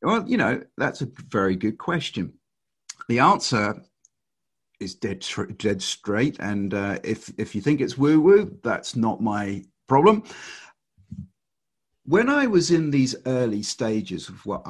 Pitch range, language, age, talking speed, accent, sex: 105-140 Hz, English, 50-69, 150 wpm, British, male